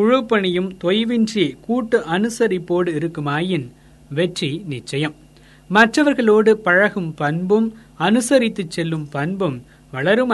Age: 20-39